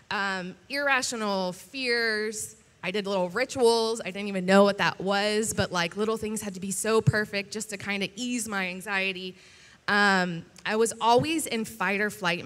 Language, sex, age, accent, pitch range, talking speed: English, female, 20-39, American, 200-245 Hz, 185 wpm